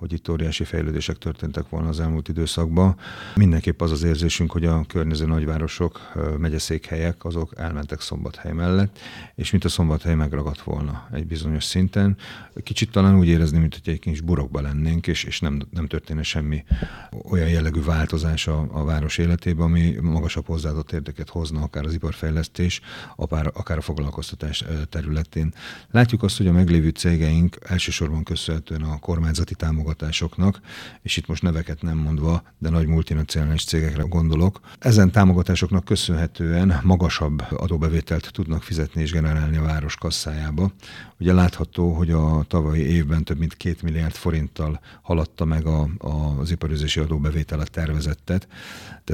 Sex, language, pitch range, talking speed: male, Hungarian, 75-85 Hz, 145 wpm